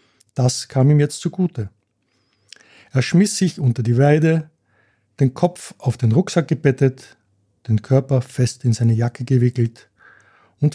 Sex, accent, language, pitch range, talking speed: male, Austrian, German, 120-150 Hz, 140 wpm